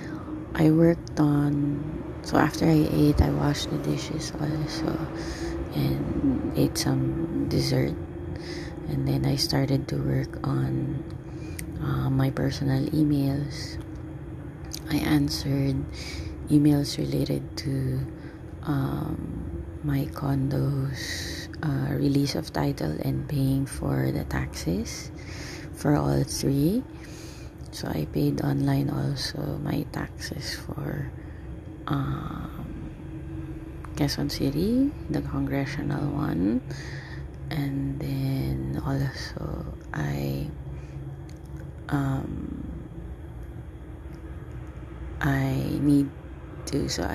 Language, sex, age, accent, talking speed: English, female, 20-39, Filipino, 90 wpm